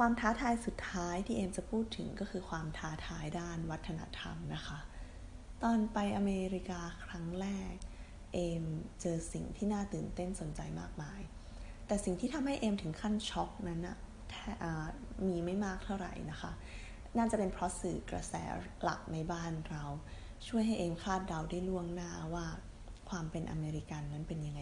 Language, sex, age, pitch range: Thai, female, 20-39, 150-190 Hz